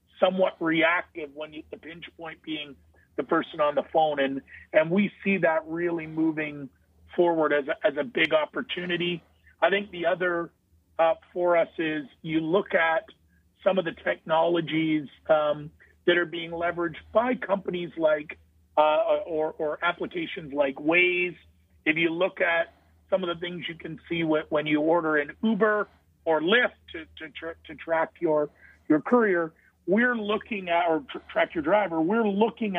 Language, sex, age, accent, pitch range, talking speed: English, male, 50-69, American, 155-185 Hz, 165 wpm